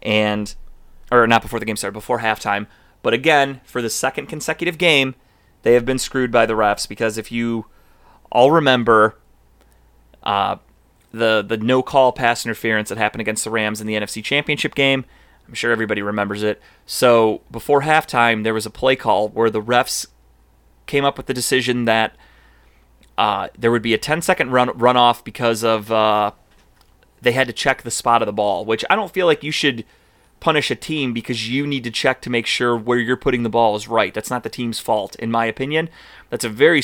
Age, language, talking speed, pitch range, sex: 30-49, English, 200 wpm, 110-130 Hz, male